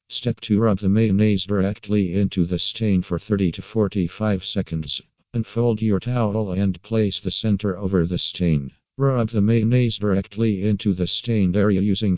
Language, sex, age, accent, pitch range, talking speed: English, male, 50-69, American, 95-110 Hz, 165 wpm